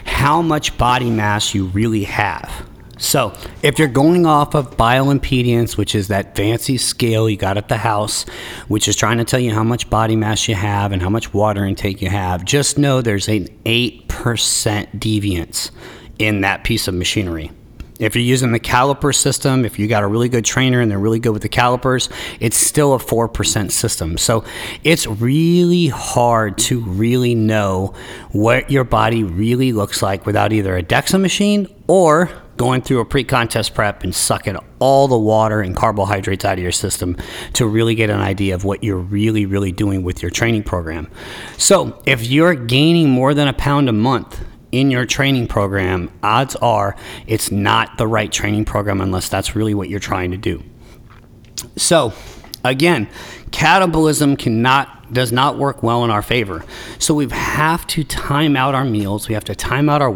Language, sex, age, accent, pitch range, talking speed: English, male, 40-59, American, 105-130 Hz, 185 wpm